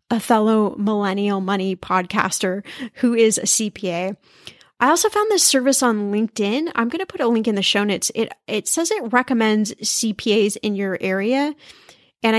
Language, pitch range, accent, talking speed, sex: English, 205-265 Hz, American, 175 wpm, female